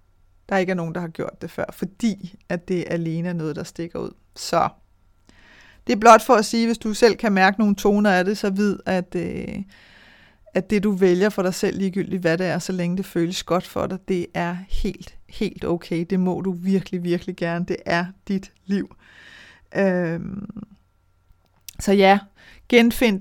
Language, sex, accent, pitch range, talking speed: Danish, female, native, 175-215 Hz, 200 wpm